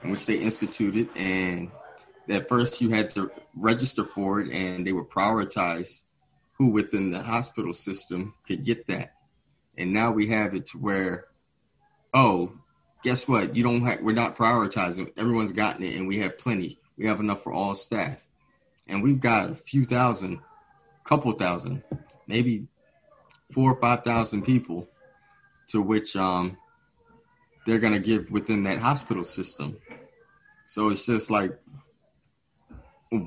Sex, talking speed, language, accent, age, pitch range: male, 150 wpm, English, American, 30-49, 100-125 Hz